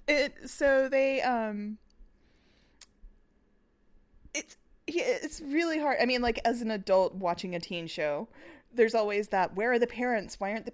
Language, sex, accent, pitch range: English, female, American, 175-235 Hz